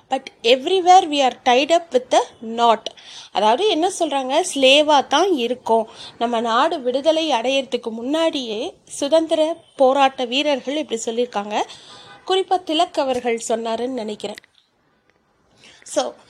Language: Tamil